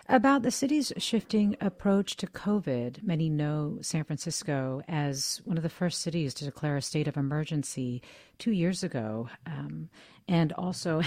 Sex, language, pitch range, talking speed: female, English, 145-195 Hz, 155 wpm